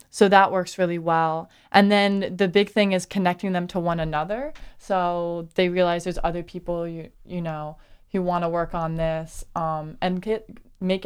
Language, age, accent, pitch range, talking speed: English, 20-39, American, 175-215 Hz, 190 wpm